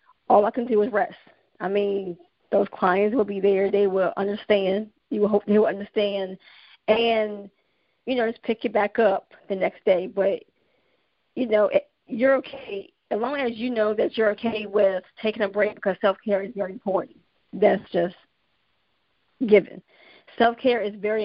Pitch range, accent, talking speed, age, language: 195-225 Hz, American, 170 wpm, 40-59, English